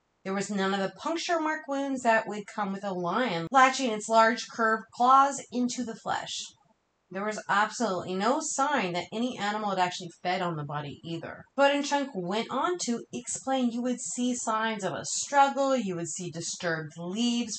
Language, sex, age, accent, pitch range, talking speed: English, female, 30-49, American, 175-240 Hz, 190 wpm